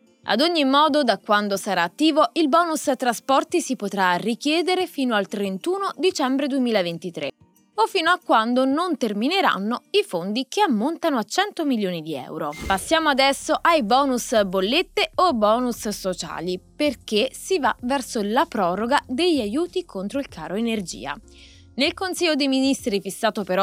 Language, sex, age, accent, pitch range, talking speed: Italian, female, 20-39, native, 200-300 Hz, 150 wpm